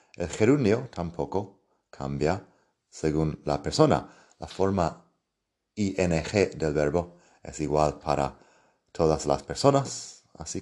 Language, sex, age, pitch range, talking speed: Spanish, male, 30-49, 80-100 Hz, 105 wpm